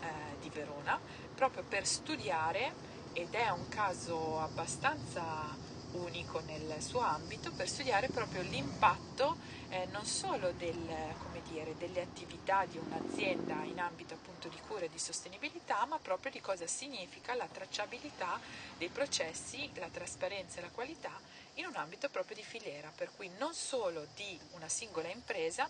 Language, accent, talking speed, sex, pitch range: Italian, native, 140 wpm, female, 160-255 Hz